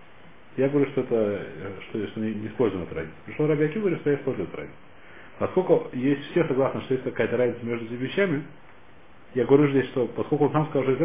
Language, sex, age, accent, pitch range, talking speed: Russian, male, 40-59, native, 110-145 Hz, 190 wpm